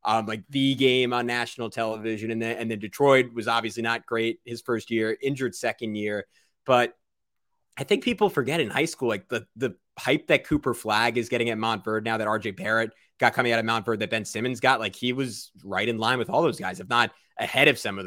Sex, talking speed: male, 240 wpm